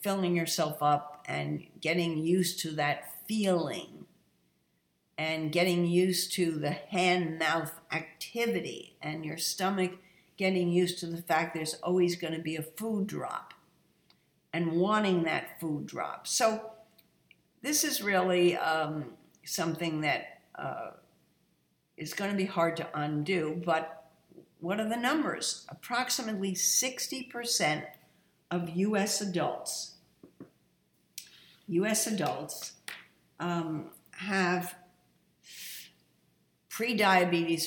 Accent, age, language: American, 60-79, English